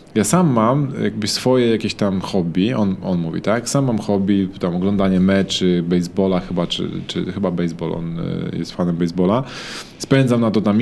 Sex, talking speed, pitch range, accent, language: male, 175 wpm, 100-125 Hz, native, Polish